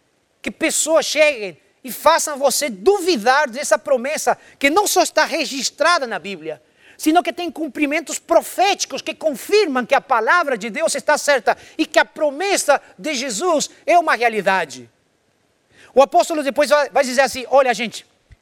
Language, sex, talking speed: Portuguese, male, 155 wpm